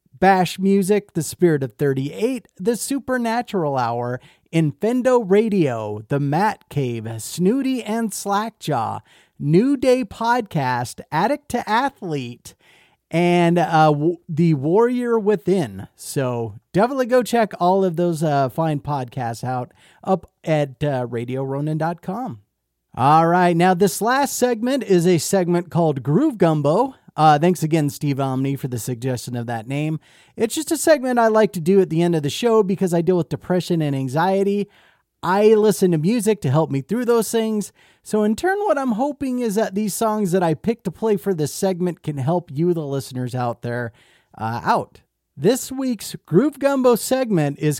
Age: 30-49